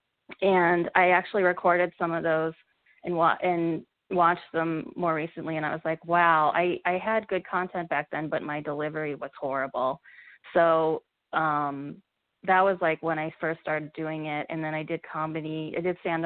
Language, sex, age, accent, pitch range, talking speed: English, female, 20-39, American, 155-175 Hz, 180 wpm